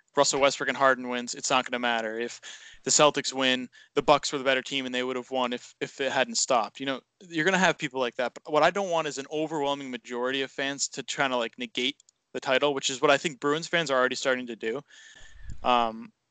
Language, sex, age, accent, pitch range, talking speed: English, male, 20-39, American, 125-145 Hz, 260 wpm